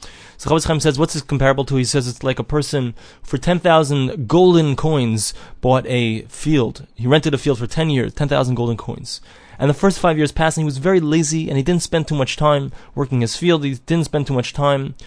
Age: 20-39